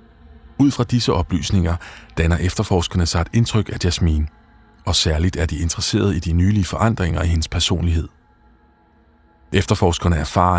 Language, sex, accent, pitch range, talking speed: Danish, male, native, 80-105 Hz, 140 wpm